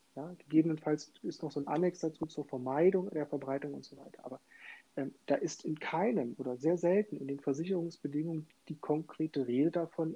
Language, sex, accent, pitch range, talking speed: German, male, German, 135-160 Hz, 175 wpm